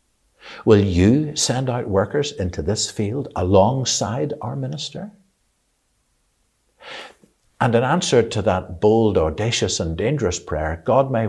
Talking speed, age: 120 wpm, 60-79